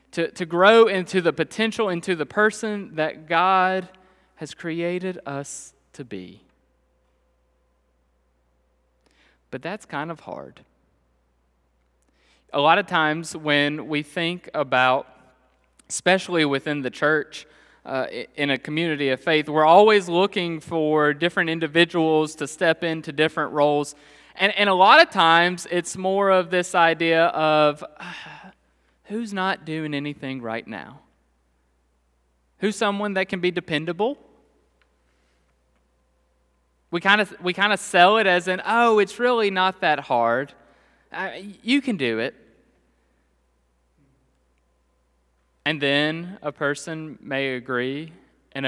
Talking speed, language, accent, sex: 125 wpm, English, American, male